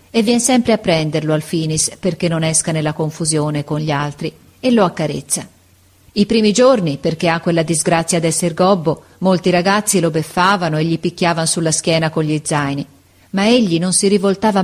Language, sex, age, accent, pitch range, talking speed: Italian, female, 40-59, native, 155-210 Hz, 180 wpm